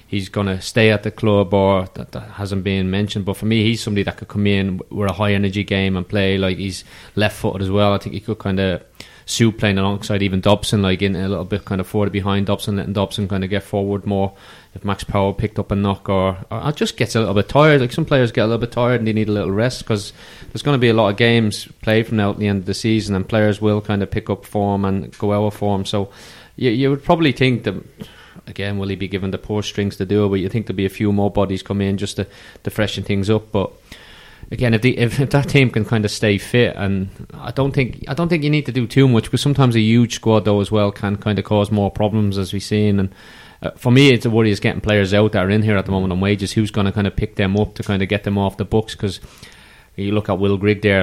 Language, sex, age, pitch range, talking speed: English, male, 20-39, 100-110 Hz, 285 wpm